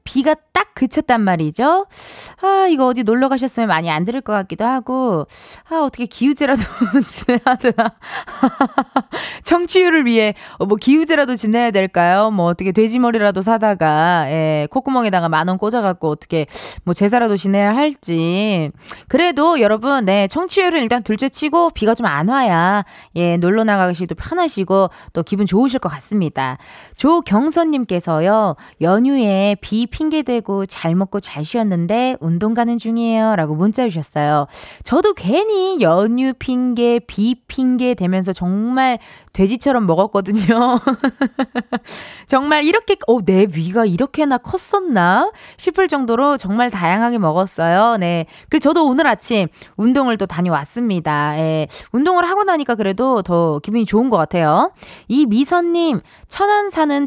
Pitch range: 190-270 Hz